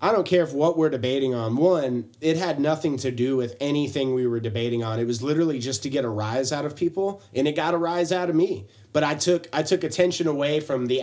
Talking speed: 260 wpm